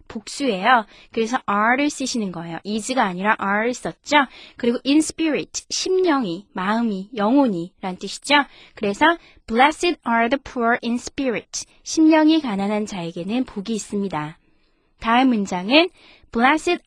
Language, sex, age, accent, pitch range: Korean, female, 20-39, native, 210-290 Hz